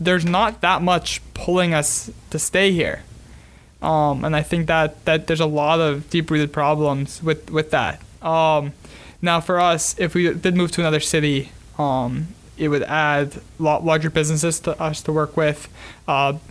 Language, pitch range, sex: English, 150-170 Hz, male